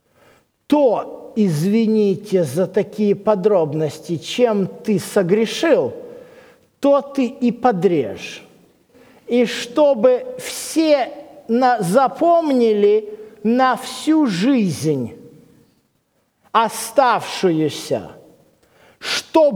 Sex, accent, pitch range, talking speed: male, native, 210-305 Hz, 65 wpm